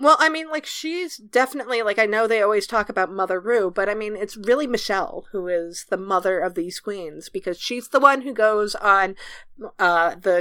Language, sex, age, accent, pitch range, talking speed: English, female, 30-49, American, 180-235 Hz, 215 wpm